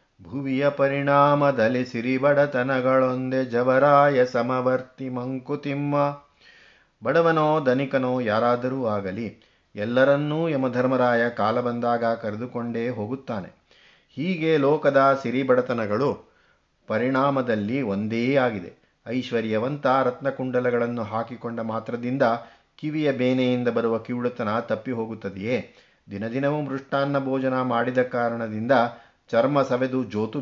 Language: Kannada